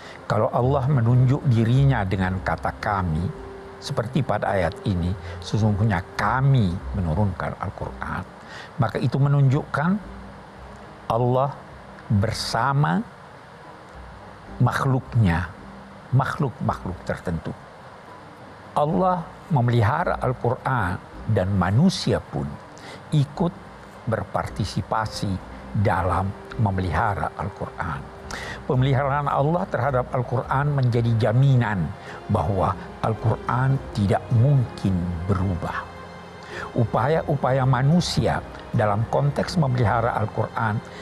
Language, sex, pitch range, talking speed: Indonesian, male, 95-135 Hz, 75 wpm